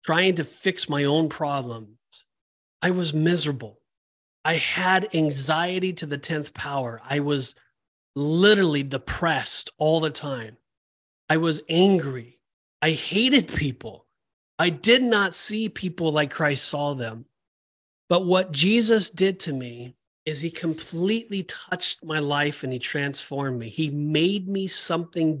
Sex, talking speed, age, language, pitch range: male, 135 wpm, 30-49, English, 145-190 Hz